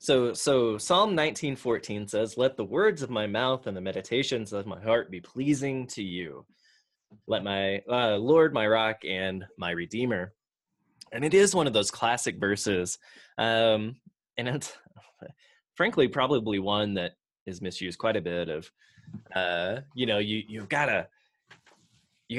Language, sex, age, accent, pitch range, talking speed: English, male, 20-39, American, 95-125 Hz, 160 wpm